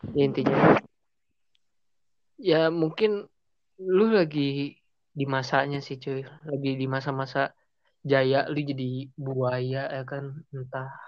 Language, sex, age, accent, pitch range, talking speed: Indonesian, male, 20-39, native, 135-155 Hz, 110 wpm